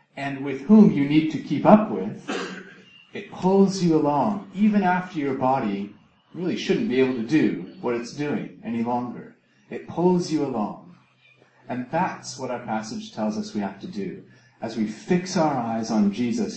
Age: 40-59